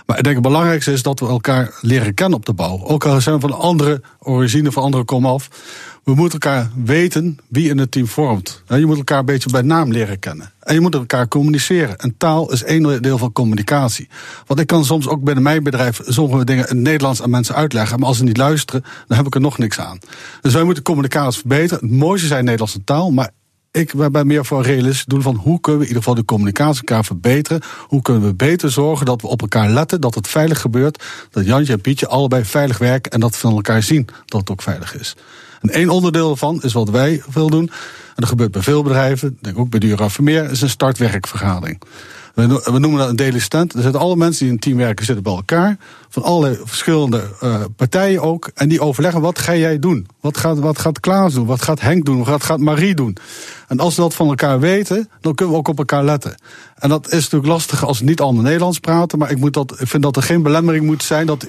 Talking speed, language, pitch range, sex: 245 wpm, Dutch, 125-155 Hz, male